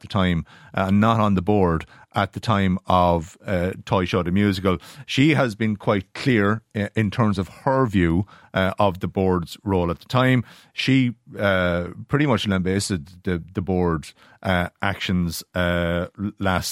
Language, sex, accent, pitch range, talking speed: English, male, Irish, 90-115 Hz, 170 wpm